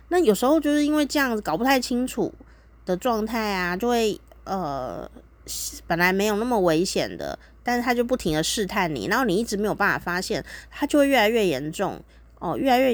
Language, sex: Chinese, female